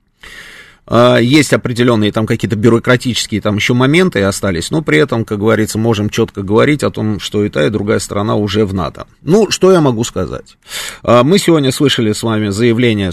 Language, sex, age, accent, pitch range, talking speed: Russian, male, 30-49, native, 105-140 Hz, 180 wpm